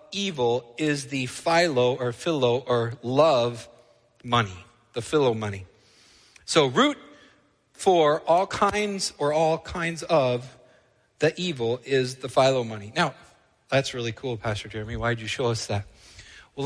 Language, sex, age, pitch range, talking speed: English, male, 40-59, 120-175 Hz, 140 wpm